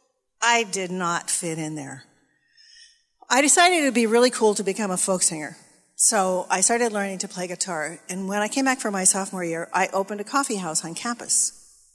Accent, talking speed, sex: American, 205 wpm, female